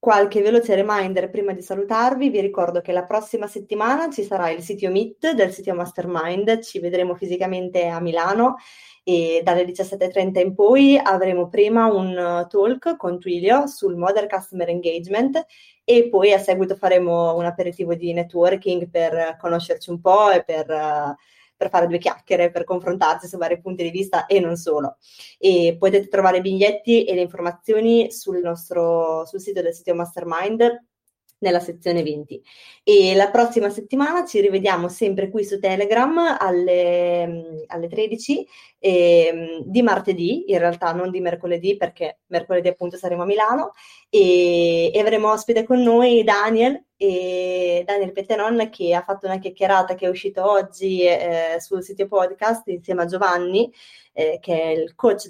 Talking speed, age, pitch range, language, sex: 155 wpm, 20-39, 175-210 Hz, Italian, female